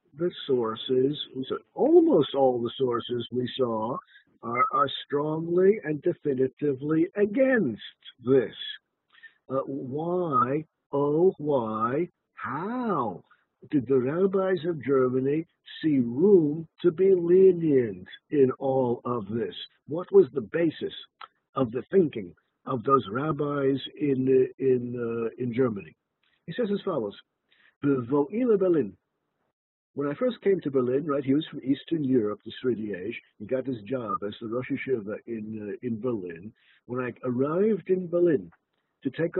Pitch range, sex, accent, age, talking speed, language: 125-175 Hz, male, American, 50-69, 135 wpm, English